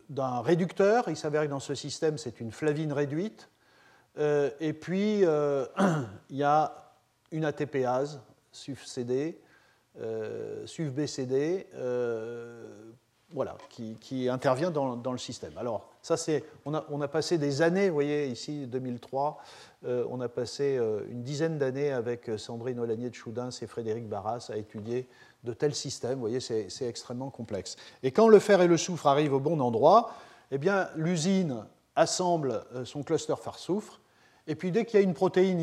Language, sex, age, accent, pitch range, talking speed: French, male, 40-59, French, 125-160 Hz, 170 wpm